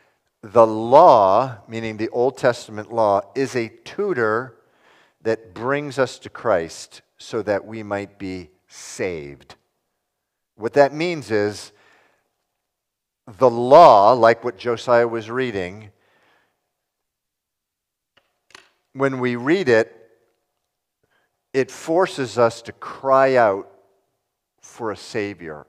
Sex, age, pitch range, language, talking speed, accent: male, 50-69, 90-120 Hz, English, 105 wpm, American